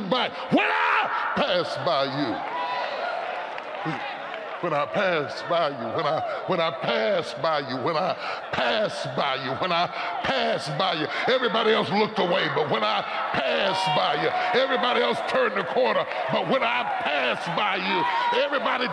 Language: English